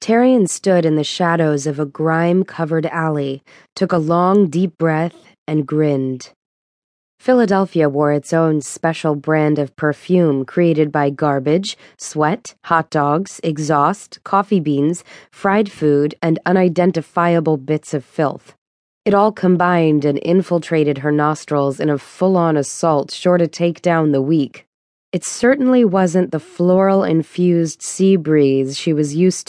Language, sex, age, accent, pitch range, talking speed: English, female, 20-39, American, 150-185 Hz, 140 wpm